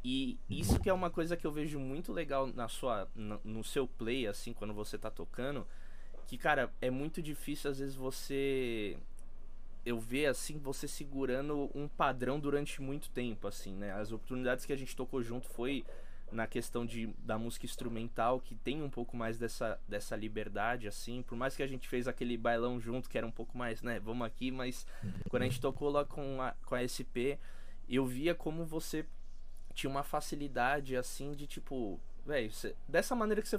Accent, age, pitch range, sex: Brazilian, 20-39, 120-160 Hz, male